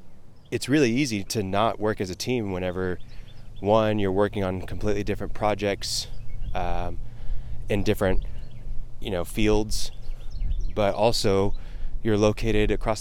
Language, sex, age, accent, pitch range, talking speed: English, male, 20-39, American, 95-115 Hz, 130 wpm